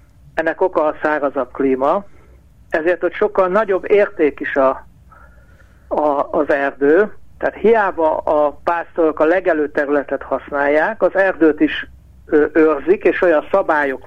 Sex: male